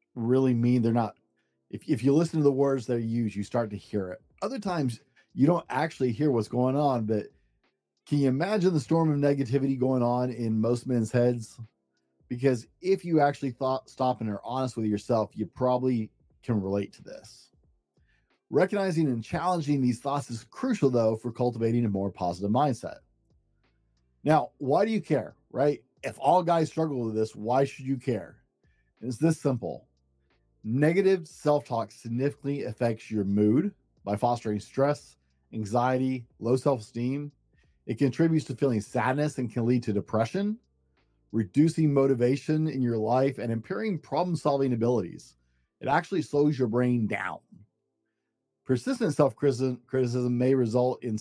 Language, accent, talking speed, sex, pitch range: English, American, 155 wpm, male, 110-140 Hz